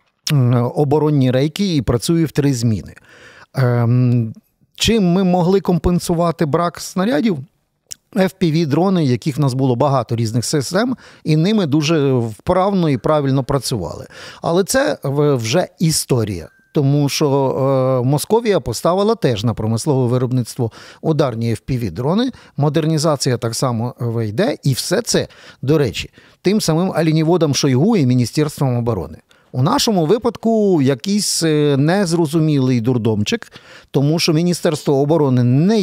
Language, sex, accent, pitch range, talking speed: Ukrainian, male, native, 130-175 Hz, 115 wpm